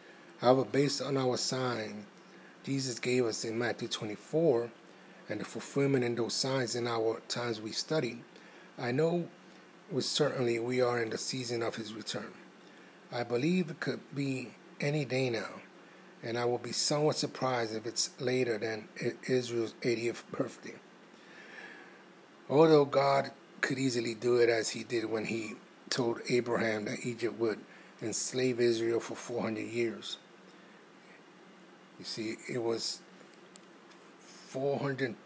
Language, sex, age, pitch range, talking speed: English, male, 30-49, 115-140 Hz, 140 wpm